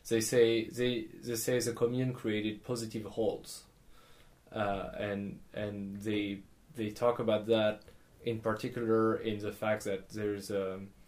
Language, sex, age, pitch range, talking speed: English, male, 20-39, 105-120 Hz, 140 wpm